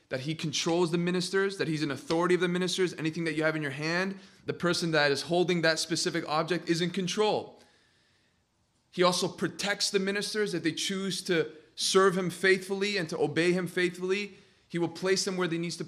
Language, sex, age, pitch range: English, male, 30-49, 150-185 Hz